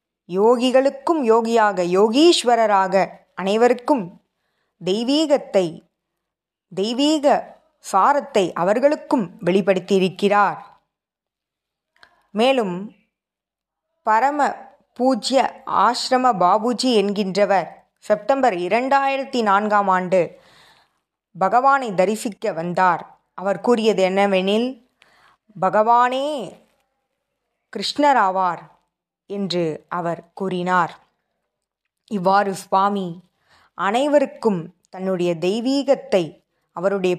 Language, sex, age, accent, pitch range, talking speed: Tamil, female, 20-39, native, 190-250 Hz, 60 wpm